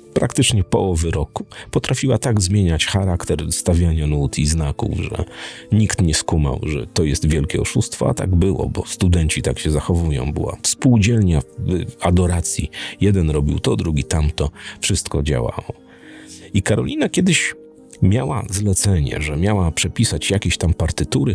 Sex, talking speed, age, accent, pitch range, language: male, 140 wpm, 40-59, native, 80-115 Hz, Polish